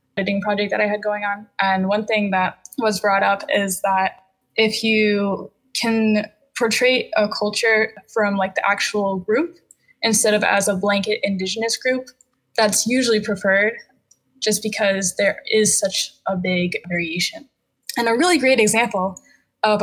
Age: 10-29